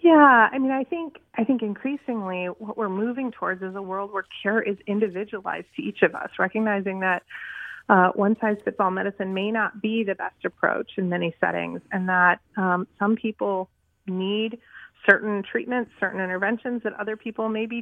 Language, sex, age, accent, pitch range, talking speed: English, female, 30-49, American, 180-225 Hz, 170 wpm